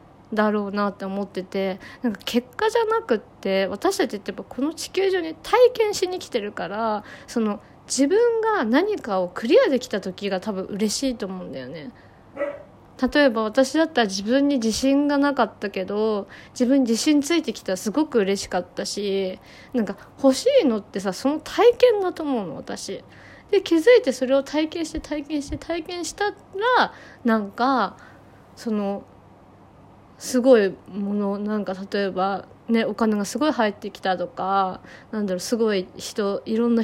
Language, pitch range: Japanese, 205-285 Hz